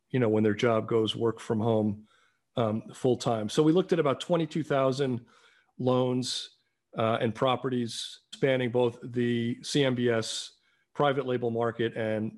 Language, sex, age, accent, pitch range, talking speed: English, male, 40-59, American, 115-135 Hz, 140 wpm